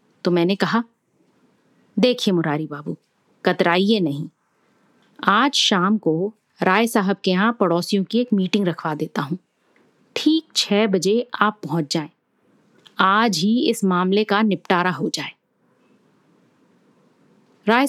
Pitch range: 175-230 Hz